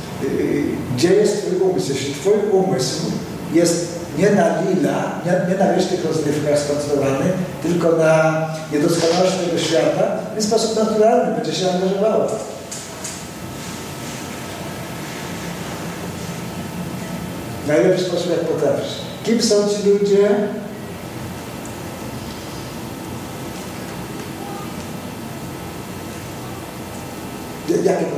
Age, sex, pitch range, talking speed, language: 50-69, male, 150-190 Hz, 80 wpm, Polish